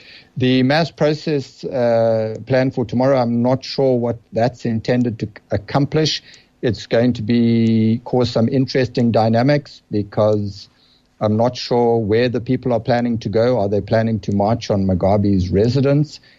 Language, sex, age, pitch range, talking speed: English, male, 60-79, 100-125 Hz, 155 wpm